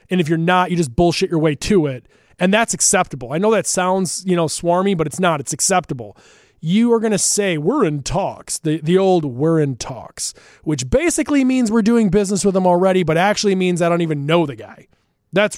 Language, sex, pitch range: English, male, 150-195 Hz